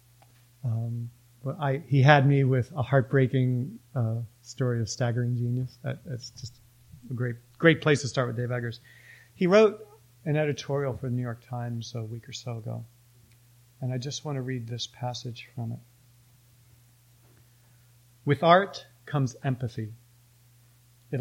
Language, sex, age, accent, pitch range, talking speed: English, male, 40-59, American, 120-135 Hz, 155 wpm